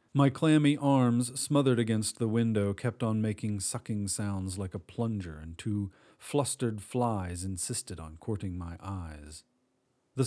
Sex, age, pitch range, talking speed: male, 40-59, 95-125 Hz, 145 wpm